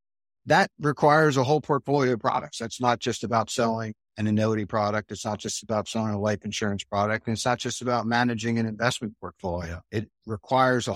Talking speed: 195 wpm